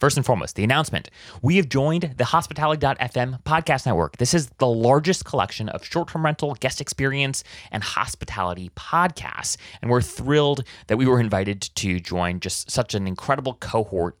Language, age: English, 30-49